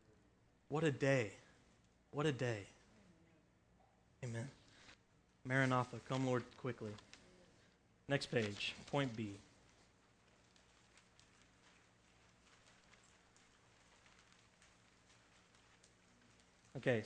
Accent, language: American, English